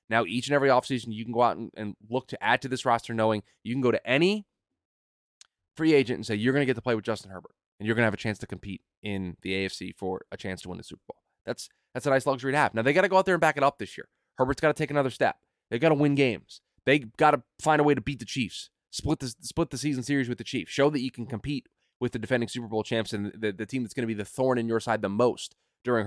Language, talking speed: English, 305 wpm